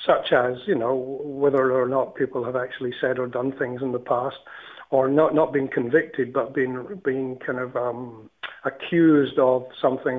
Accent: British